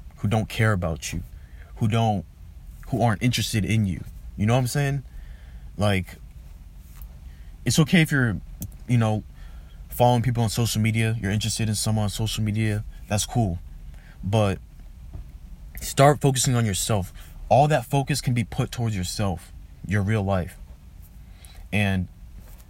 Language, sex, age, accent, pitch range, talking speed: English, male, 20-39, American, 80-110 Hz, 145 wpm